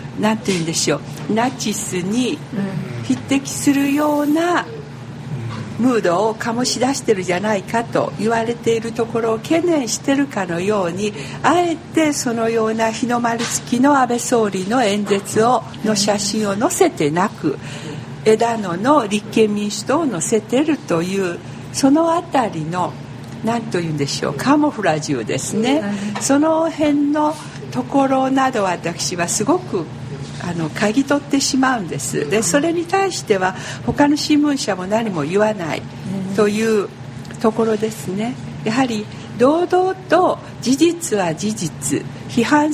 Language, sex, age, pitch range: Japanese, female, 60-79, 195-290 Hz